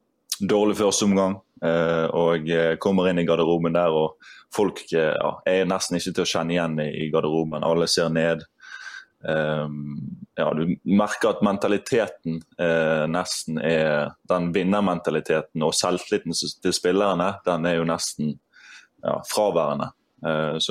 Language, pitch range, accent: English, 80-100 Hz, Swedish